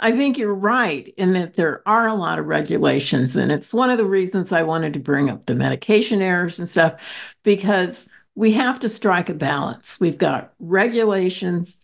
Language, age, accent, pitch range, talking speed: English, 50-69, American, 150-195 Hz, 195 wpm